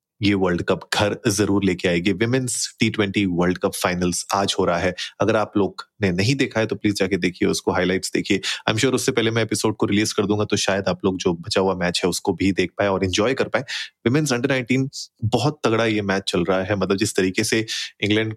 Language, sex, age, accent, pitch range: Hindi, male, 30-49, native, 100-115 Hz